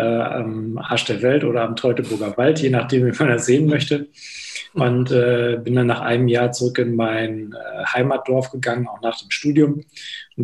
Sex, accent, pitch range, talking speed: male, German, 120-135 Hz, 190 wpm